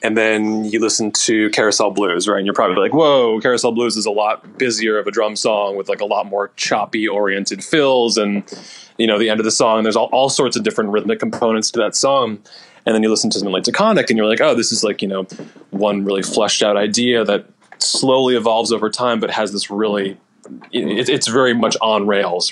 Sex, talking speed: male, 230 wpm